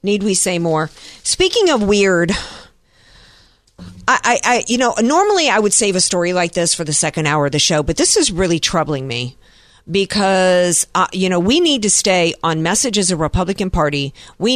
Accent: American